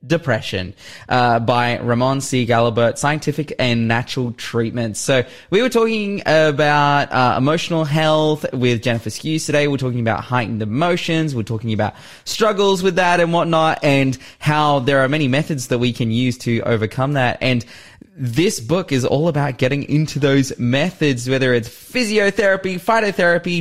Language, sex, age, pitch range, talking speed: English, male, 20-39, 120-155 Hz, 160 wpm